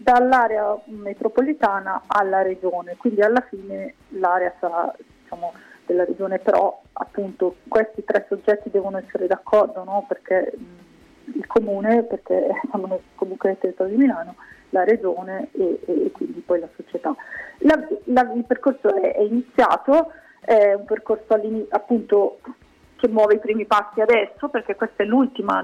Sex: female